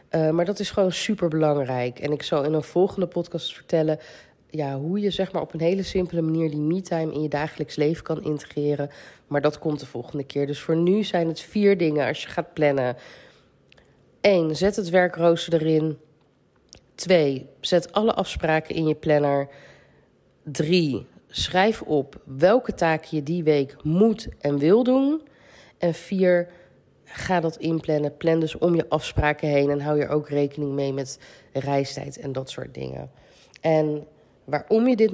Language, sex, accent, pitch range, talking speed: Dutch, female, Dutch, 145-175 Hz, 175 wpm